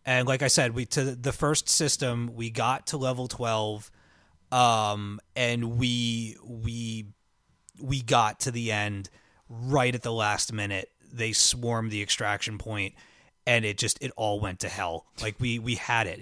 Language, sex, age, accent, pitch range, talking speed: English, male, 30-49, American, 110-135 Hz, 170 wpm